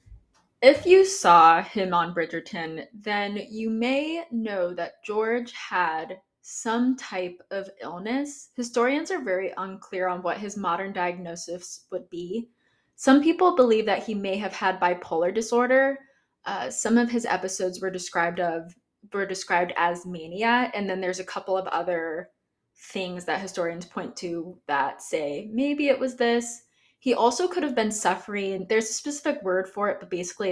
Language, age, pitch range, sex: English, 20-39, 185-245 Hz, female